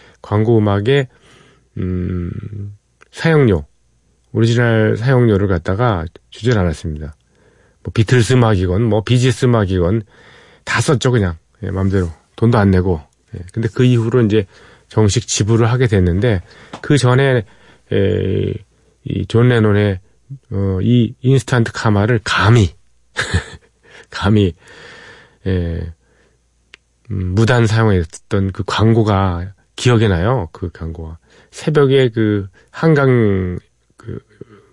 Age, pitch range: 40-59, 95-120 Hz